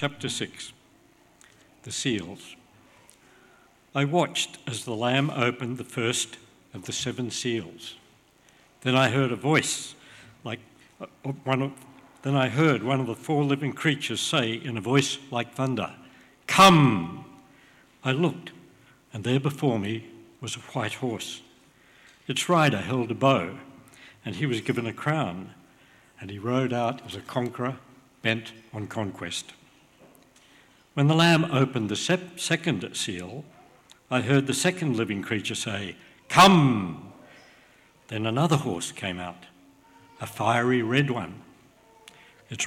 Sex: male